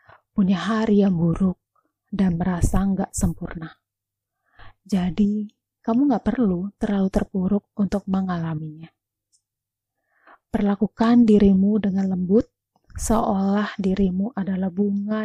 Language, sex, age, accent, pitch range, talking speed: Indonesian, female, 20-39, native, 170-205 Hz, 95 wpm